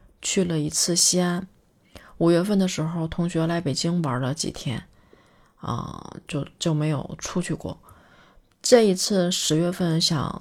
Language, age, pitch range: Chinese, 30-49, 160-195 Hz